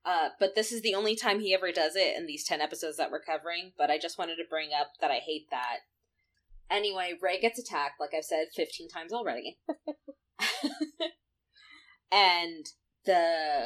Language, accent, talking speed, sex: English, American, 180 wpm, female